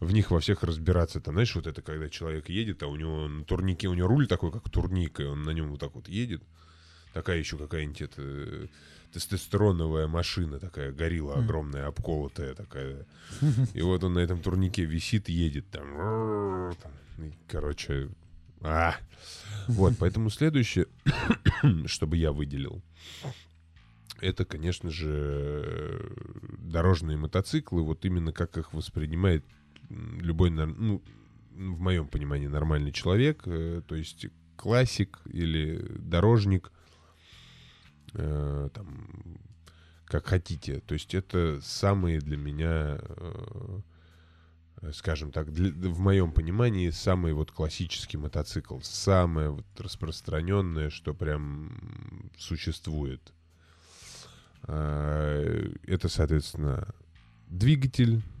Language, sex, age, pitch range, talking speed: Russian, male, 20-39, 80-100 Hz, 115 wpm